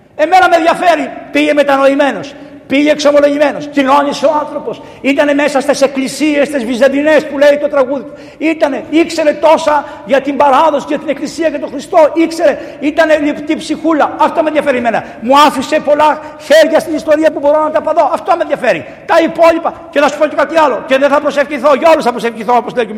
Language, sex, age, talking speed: Greek, male, 50-69, 185 wpm